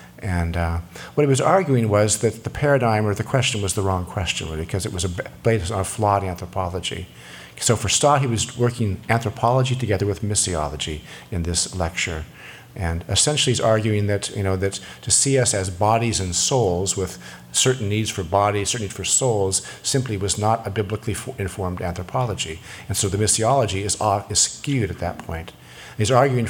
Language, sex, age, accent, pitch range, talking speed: English, male, 50-69, American, 95-120 Hz, 185 wpm